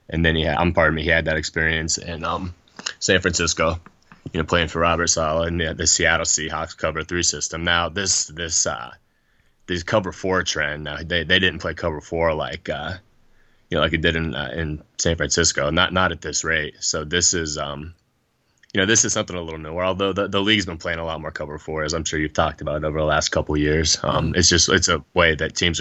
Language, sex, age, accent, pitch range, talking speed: English, male, 20-39, American, 80-90 Hz, 250 wpm